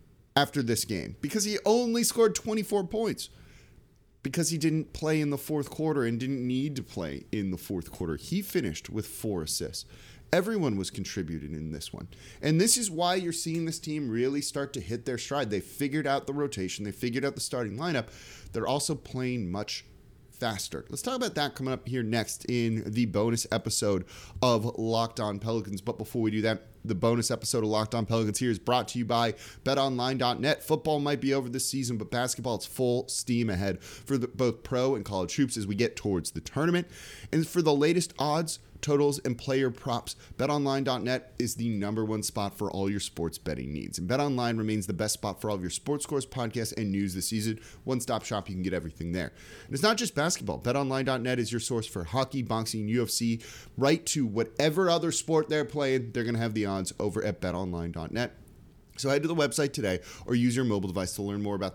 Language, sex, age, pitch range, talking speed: English, male, 30-49, 105-140 Hz, 210 wpm